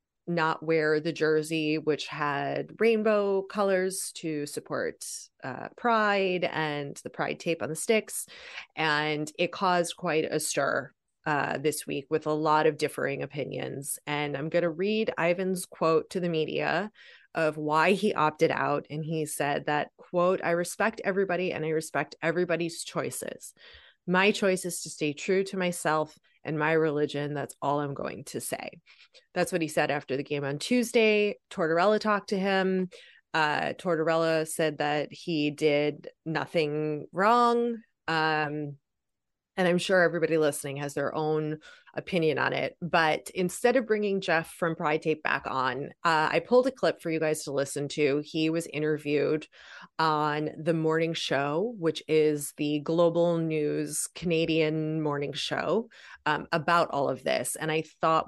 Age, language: 20-39, English